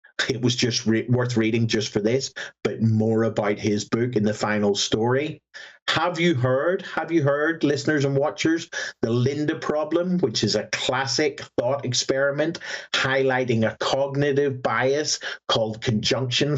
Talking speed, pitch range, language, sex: 150 wpm, 115-160 Hz, English, male